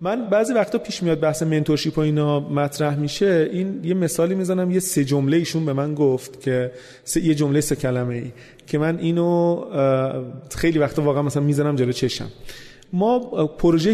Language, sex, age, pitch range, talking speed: Persian, male, 30-49, 135-185 Hz, 170 wpm